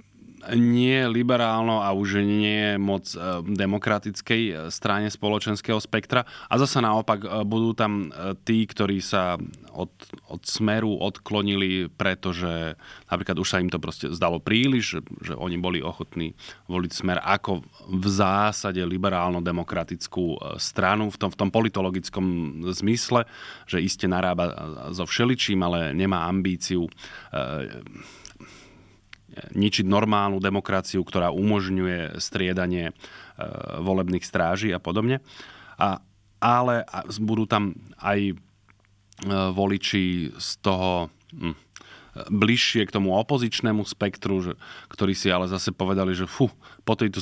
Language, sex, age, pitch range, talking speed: Slovak, male, 30-49, 90-105 Hz, 115 wpm